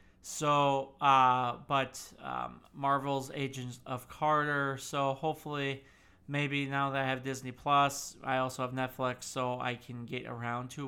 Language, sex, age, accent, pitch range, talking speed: English, male, 30-49, American, 130-150 Hz, 150 wpm